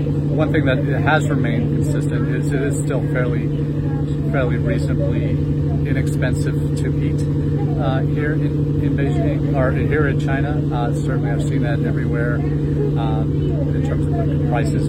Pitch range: 145-150 Hz